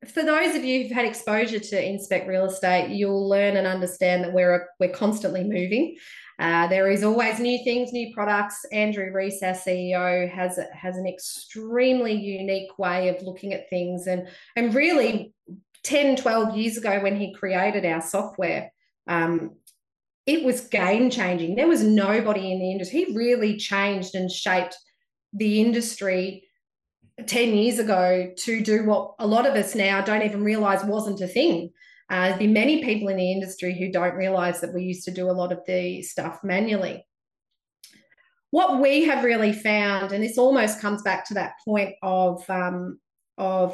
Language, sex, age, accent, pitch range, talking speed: English, female, 20-39, Australian, 185-225 Hz, 175 wpm